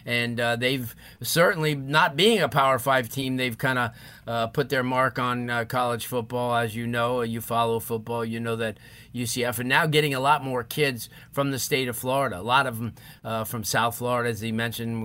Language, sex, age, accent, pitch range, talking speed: English, male, 40-59, American, 120-145 Hz, 215 wpm